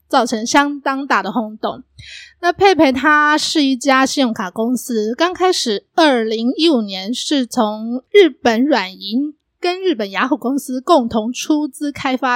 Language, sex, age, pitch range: Chinese, female, 20-39, 235-315 Hz